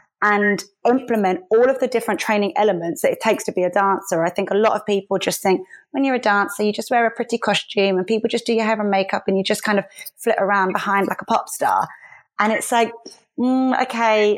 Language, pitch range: English, 195-230 Hz